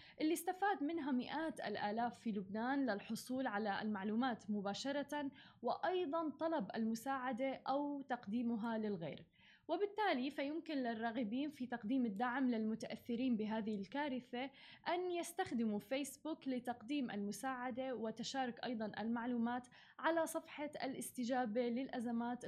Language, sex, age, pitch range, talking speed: Arabic, female, 10-29, 220-275 Hz, 100 wpm